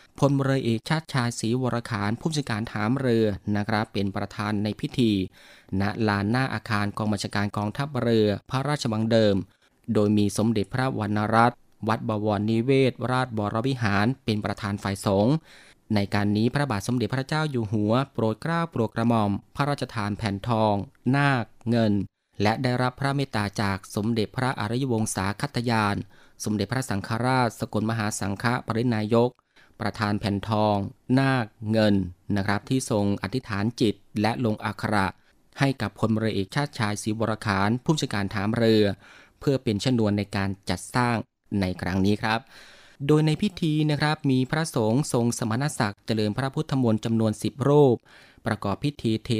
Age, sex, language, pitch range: 20-39, male, Thai, 105-125 Hz